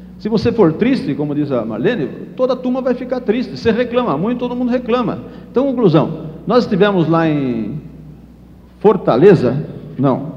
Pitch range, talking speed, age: 160-205 Hz, 155 wpm, 60-79